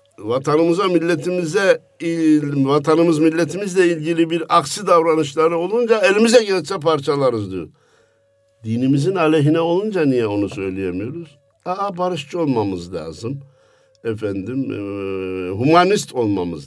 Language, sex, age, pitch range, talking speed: Turkish, male, 60-79, 125-175 Hz, 95 wpm